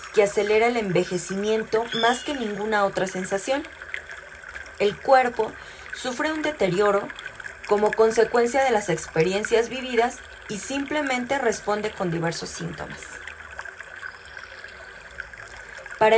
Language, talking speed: Spanish, 100 wpm